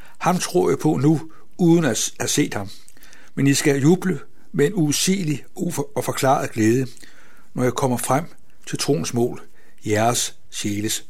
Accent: native